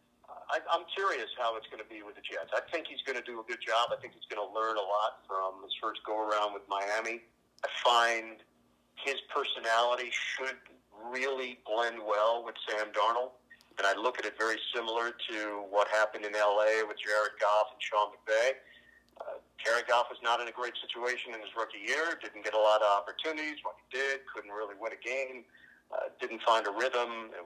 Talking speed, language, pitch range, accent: 205 wpm, English, 105-120 Hz, American